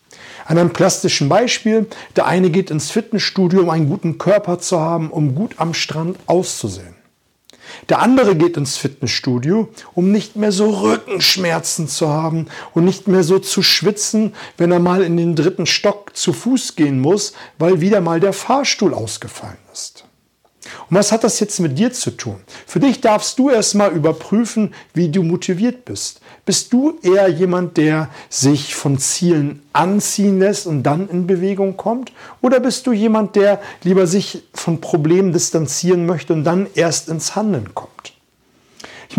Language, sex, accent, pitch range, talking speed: German, male, German, 155-200 Hz, 165 wpm